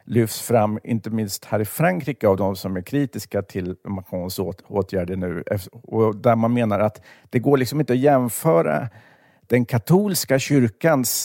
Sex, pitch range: male, 100-125 Hz